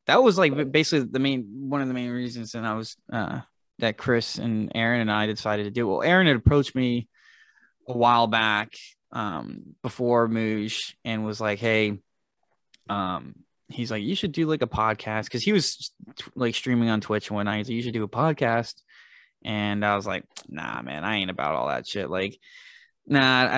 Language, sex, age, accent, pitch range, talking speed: English, male, 20-39, American, 105-120 Hz, 200 wpm